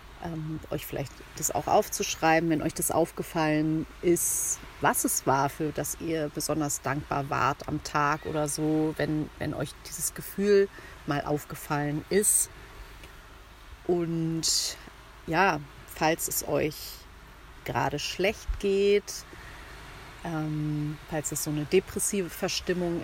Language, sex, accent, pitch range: German, female, German, 150-175 Hz